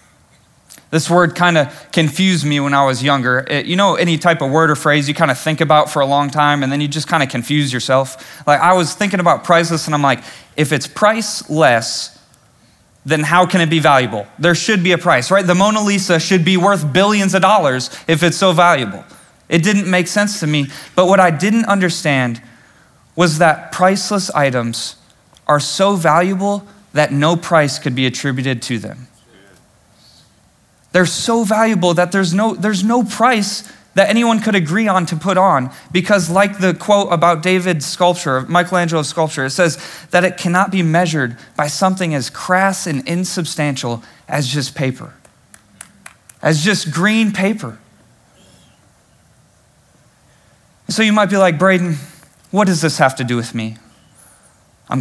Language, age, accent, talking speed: English, 20-39, American, 170 wpm